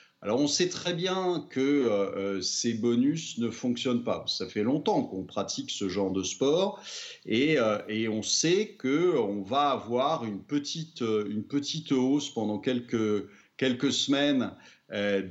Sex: male